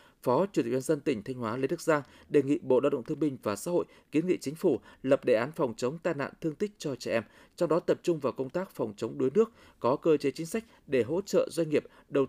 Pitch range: 130-185 Hz